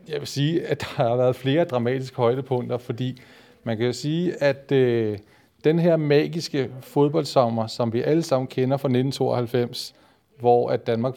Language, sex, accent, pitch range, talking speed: Danish, male, native, 120-145 Hz, 165 wpm